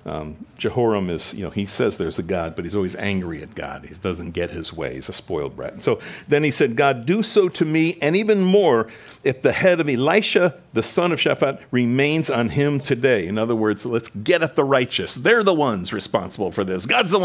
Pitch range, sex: 110-150 Hz, male